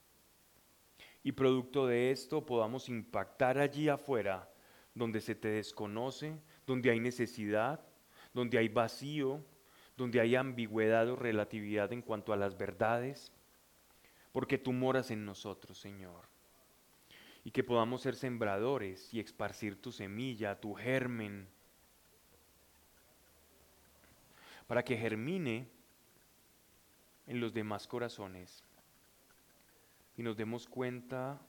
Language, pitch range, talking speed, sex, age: Spanish, 100-120 Hz, 105 wpm, male, 20-39